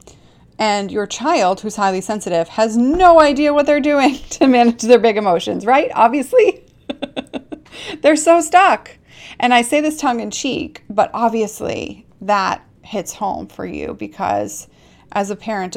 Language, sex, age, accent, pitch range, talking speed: English, female, 30-49, American, 175-225 Hz, 150 wpm